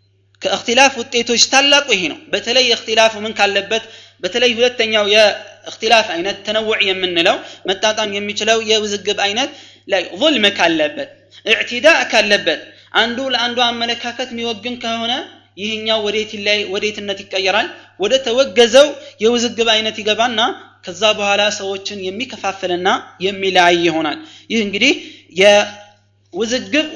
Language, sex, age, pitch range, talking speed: Amharic, male, 30-49, 200-240 Hz, 110 wpm